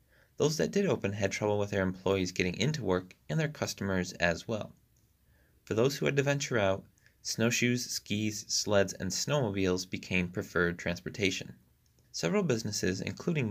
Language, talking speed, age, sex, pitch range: English, 155 wpm, 30-49, male, 90-115 Hz